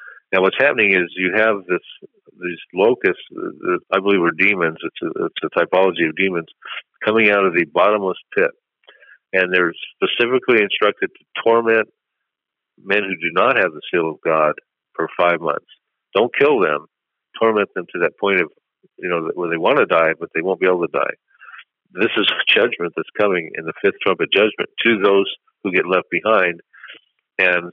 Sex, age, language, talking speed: male, 50-69, English, 185 wpm